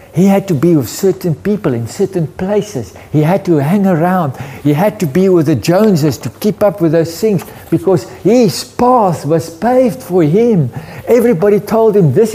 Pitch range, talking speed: 130-215 Hz, 190 wpm